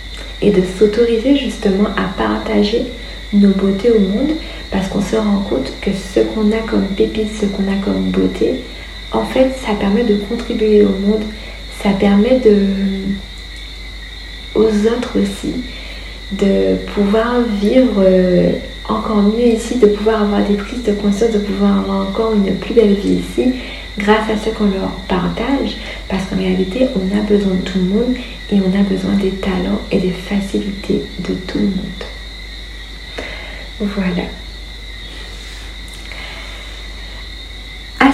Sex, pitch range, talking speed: female, 190-220 Hz, 145 wpm